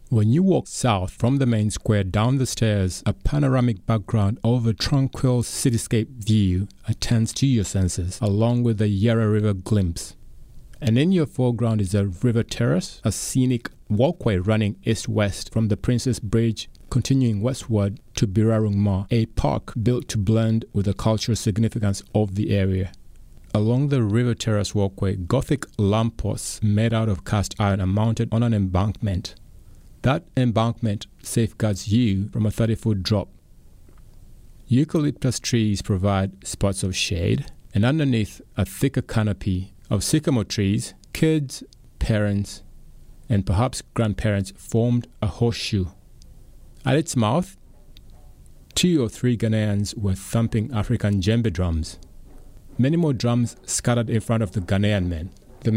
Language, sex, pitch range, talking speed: English, male, 100-120 Hz, 145 wpm